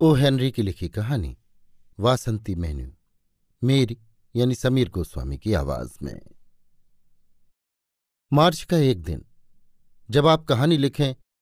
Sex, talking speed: male, 115 wpm